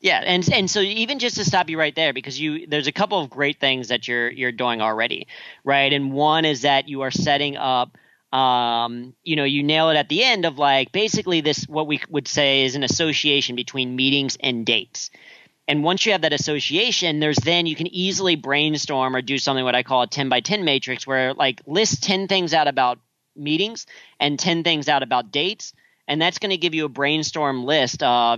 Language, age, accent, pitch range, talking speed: English, 40-59, American, 130-155 Hz, 225 wpm